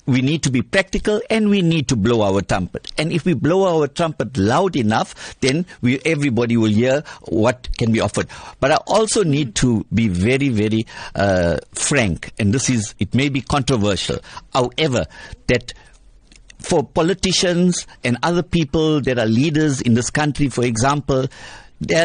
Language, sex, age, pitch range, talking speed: English, male, 60-79, 120-160 Hz, 165 wpm